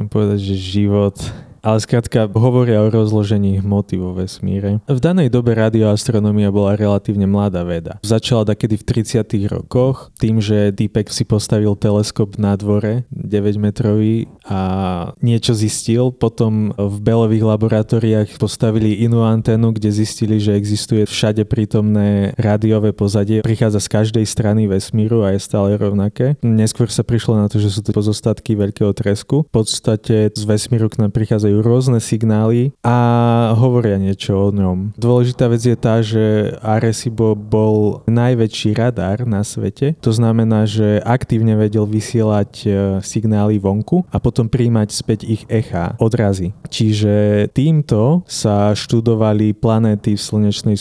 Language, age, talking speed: Slovak, 20-39, 140 wpm